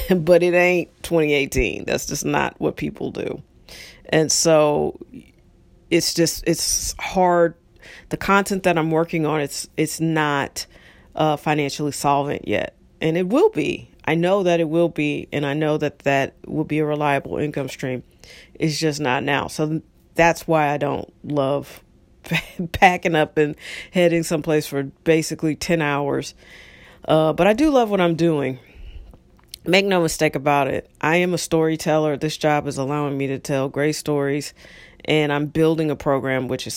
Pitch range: 145-165 Hz